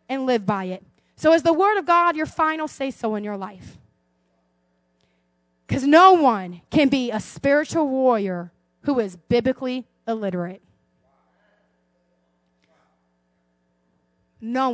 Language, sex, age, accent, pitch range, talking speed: English, female, 30-49, American, 190-310 Hz, 120 wpm